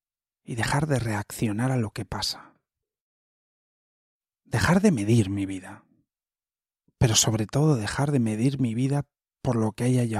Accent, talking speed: Spanish, 155 wpm